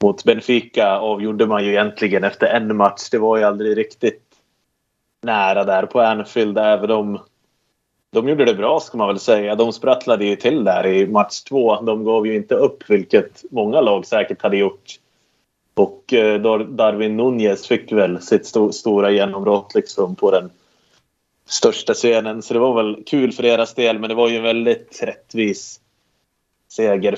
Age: 20-39